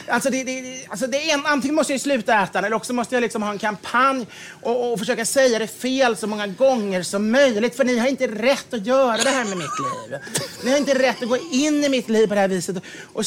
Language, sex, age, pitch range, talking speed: English, male, 30-49, 200-260 Hz, 260 wpm